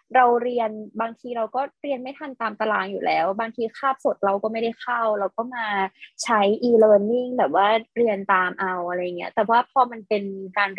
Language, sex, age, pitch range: Thai, female, 20-39, 205-250 Hz